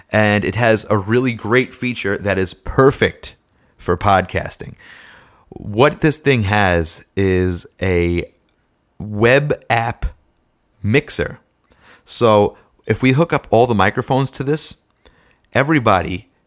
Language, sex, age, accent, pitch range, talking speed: English, male, 30-49, American, 100-120 Hz, 115 wpm